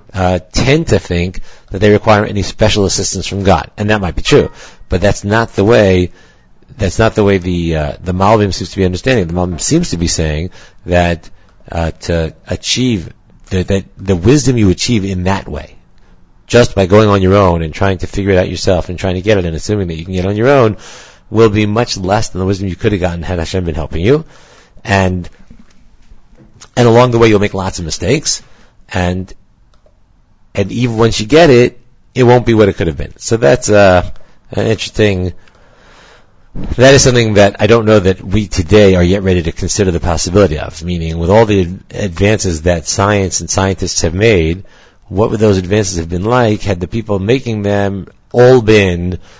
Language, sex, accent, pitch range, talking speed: English, male, American, 90-110 Hz, 205 wpm